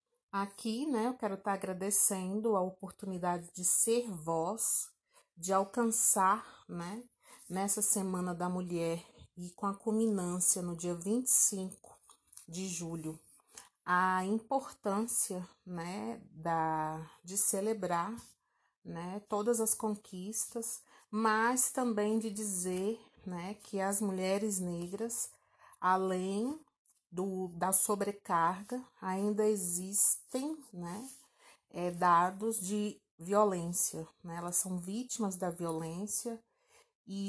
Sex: female